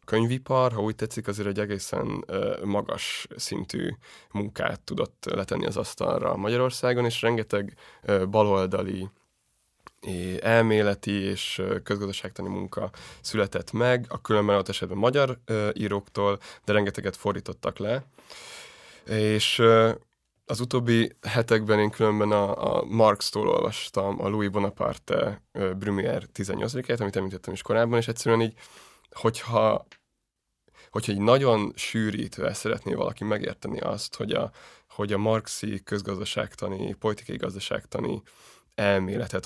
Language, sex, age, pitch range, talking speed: Hungarian, male, 20-39, 100-115 Hz, 110 wpm